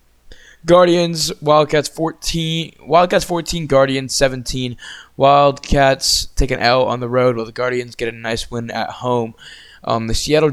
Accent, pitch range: American, 110-140 Hz